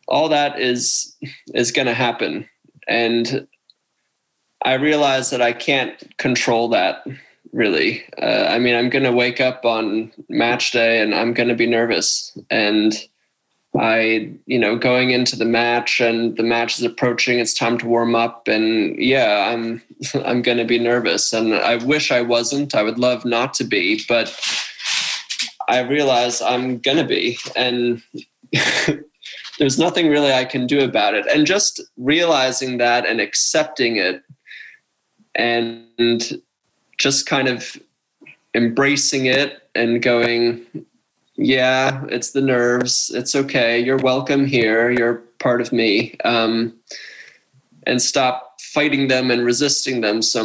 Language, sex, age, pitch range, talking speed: English, male, 20-39, 115-135 Hz, 145 wpm